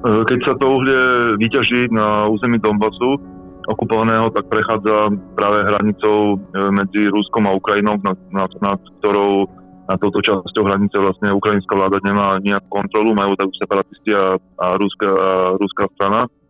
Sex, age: male, 20-39